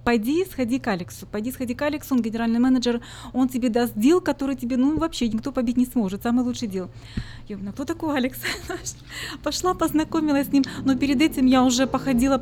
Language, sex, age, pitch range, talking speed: Russian, female, 20-39, 220-260 Hz, 195 wpm